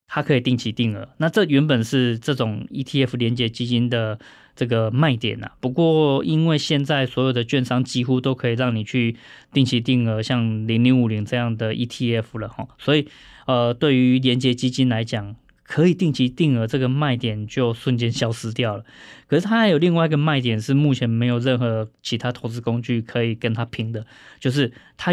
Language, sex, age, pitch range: Chinese, male, 20-39, 115-140 Hz